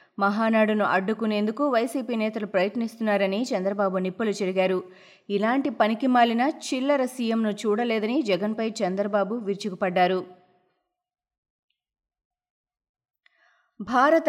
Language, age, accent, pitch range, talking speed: Telugu, 20-39, native, 200-250 Hz, 70 wpm